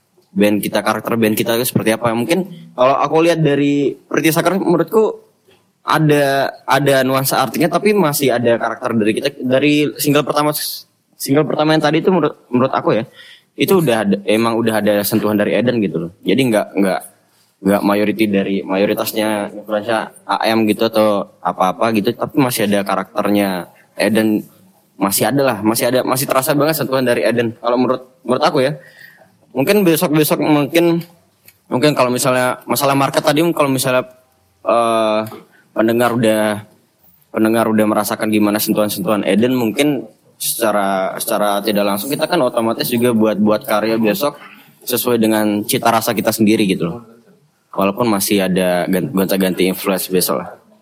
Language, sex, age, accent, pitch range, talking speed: Indonesian, male, 10-29, native, 105-145 Hz, 150 wpm